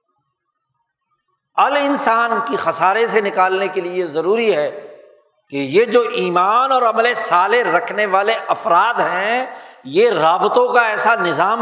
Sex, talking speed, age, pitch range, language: male, 135 wpm, 60-79, 180-280 Hz, Urdu